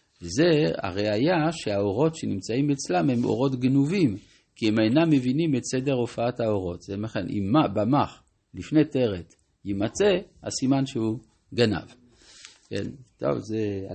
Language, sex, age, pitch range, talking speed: Hebrew, male, 50-69, 110-150 Hz, 125 wpm